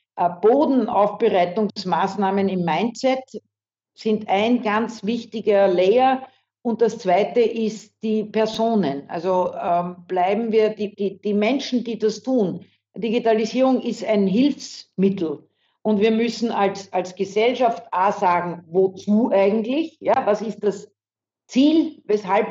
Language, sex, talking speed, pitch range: German, female, 120 wpm, 190-230 Hz